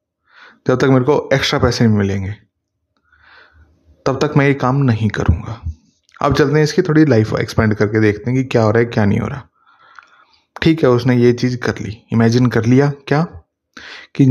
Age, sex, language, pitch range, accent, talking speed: 20-39, male, Hindi, 110-135 Hz, native, 195 wpm